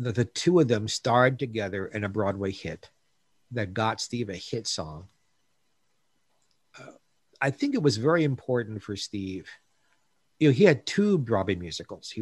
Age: 50-69